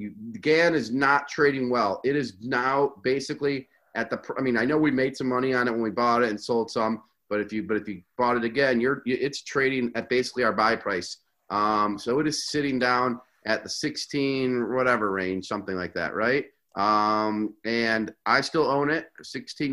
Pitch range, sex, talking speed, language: 110-135 Hz, male, 215 wpm, English